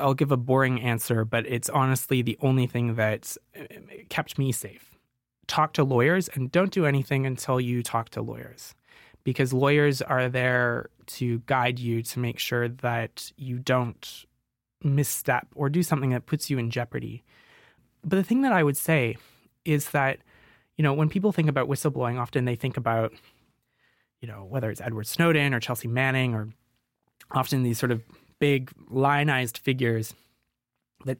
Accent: American